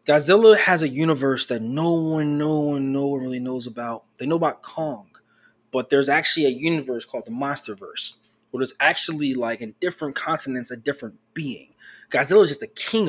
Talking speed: 190 wpm